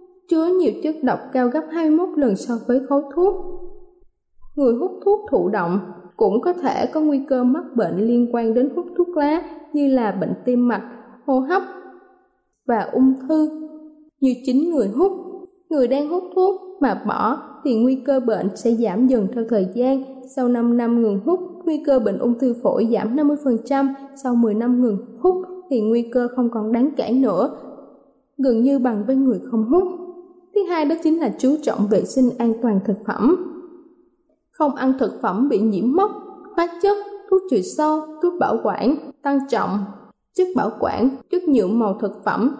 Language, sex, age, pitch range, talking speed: Vietnamese, female, 20-39, 240-320 Hz, 185 wpm